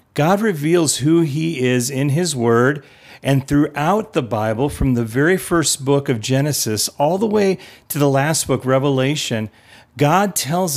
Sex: male